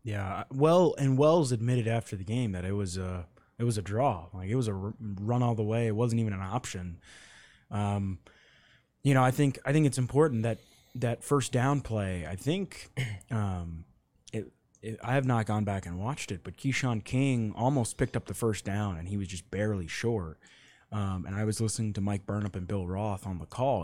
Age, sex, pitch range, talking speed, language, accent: 20-39, male, 100-120 Hz, 215 wpm, English, American